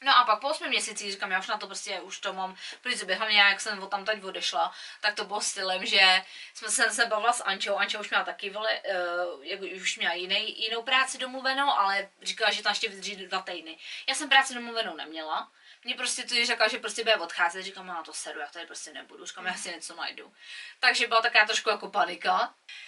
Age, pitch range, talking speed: 20-39, 200-255 Hz, 225 wpm